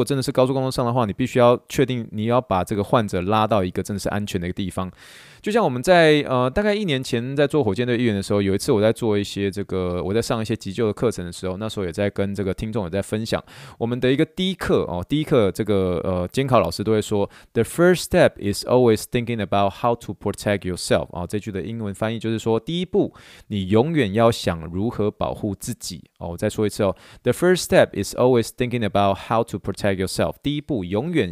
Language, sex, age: Chinese, male, 20-39